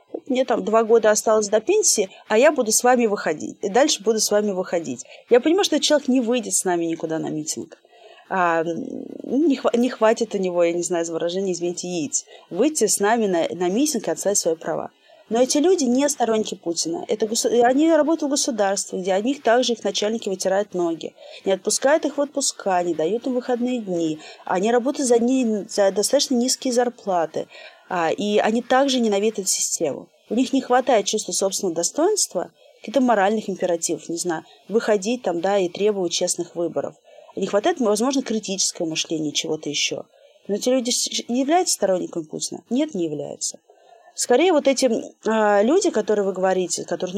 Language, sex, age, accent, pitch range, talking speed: Russian, female, 30-49, native, 185-260 Hz, 175 wpm